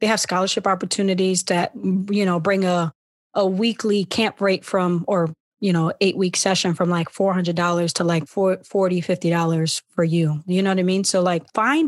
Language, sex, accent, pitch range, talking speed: English, female, American, 175-205 Hz, 205 wpm